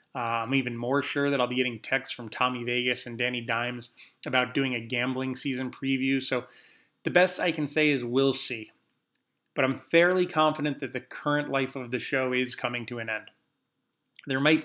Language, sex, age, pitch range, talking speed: English, male, 20-39, 125-150 Hz, 200 wpm